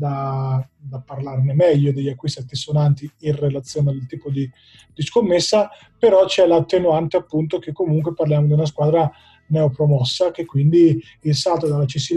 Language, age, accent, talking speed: Italian, 20-39, native, 155 wpm